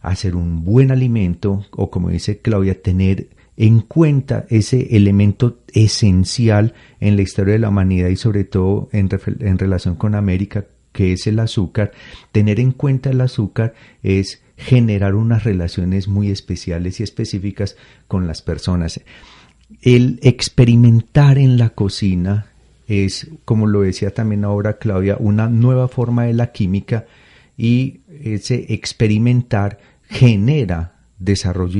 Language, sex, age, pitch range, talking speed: Spanish, male, 40-59, 95-120 Hz, 135 wpm